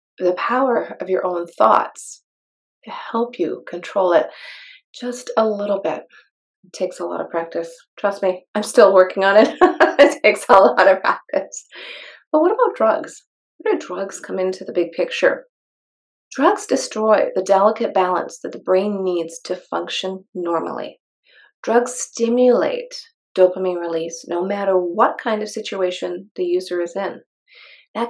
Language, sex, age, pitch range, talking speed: English, female, 30-49, 180-245 Hz, 155 wpm